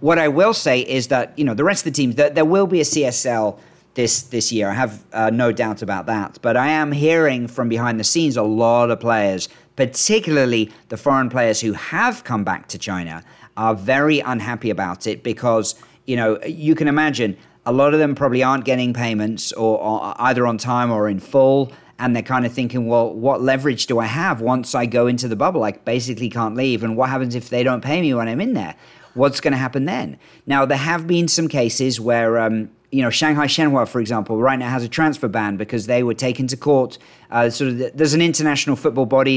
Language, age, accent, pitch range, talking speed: English, 40-59, British, 115-140 Hz, 230 wpm